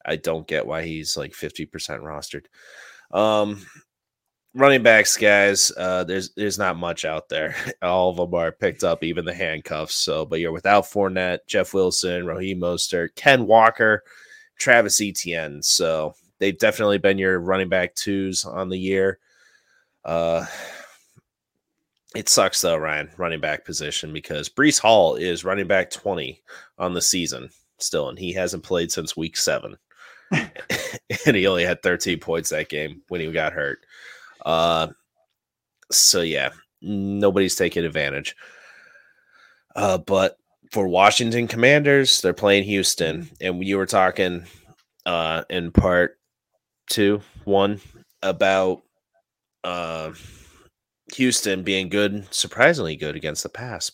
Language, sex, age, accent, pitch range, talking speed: English, male, 30-49, American, 85-105 Hz, 135 wpm